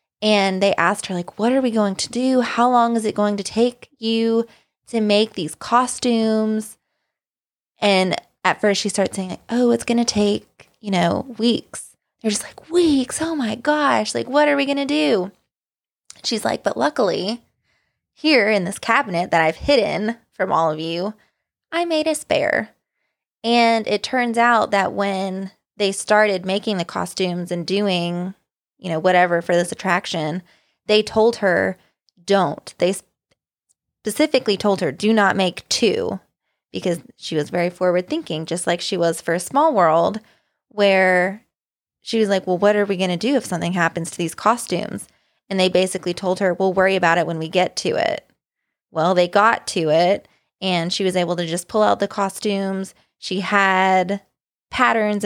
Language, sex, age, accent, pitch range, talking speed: English, female, 20-39, American, 180-225 Hz, 180 wpm